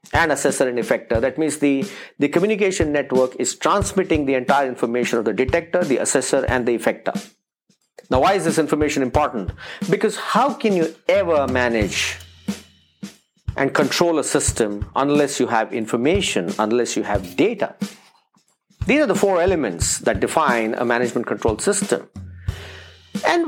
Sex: male